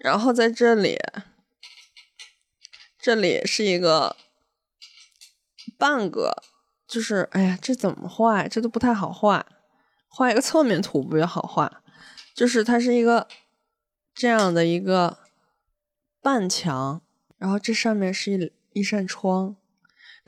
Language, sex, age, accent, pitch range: Chinese, female, 20-39, native, 195-260 Hz